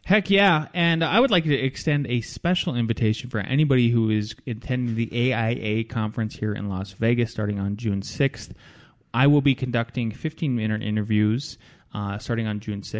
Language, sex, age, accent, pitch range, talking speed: English, male, 20-39, American, 110-155 Hz, 170 wpm